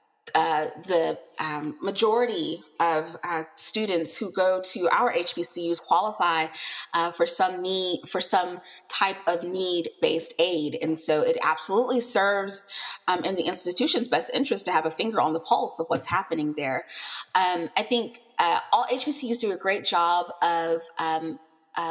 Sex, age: female, 20-39